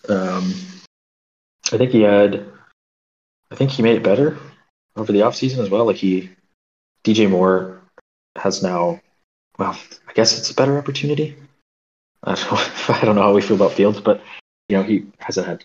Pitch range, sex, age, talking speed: 85-110 Hz, male, 20-39, 165 wpm